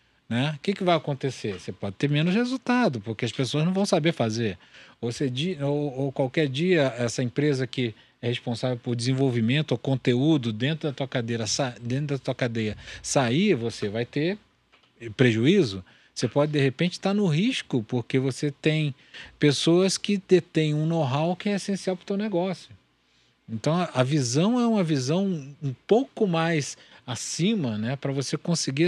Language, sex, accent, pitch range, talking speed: Portuguese, male, Brazilian, 125-165 Hz, 160 wpm